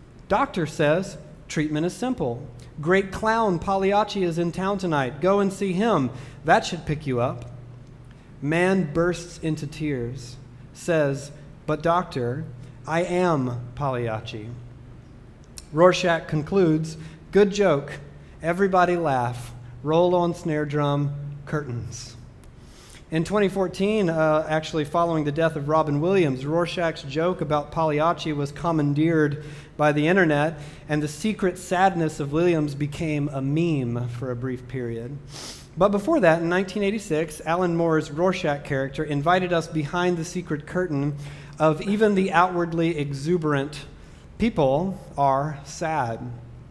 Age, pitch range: 40-59, 140-175 Hz